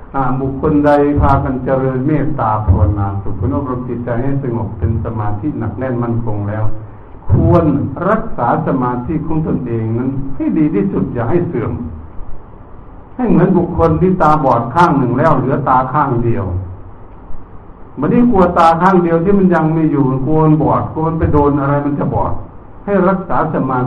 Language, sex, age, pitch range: Thai, male, 60-79, 105-150 Hz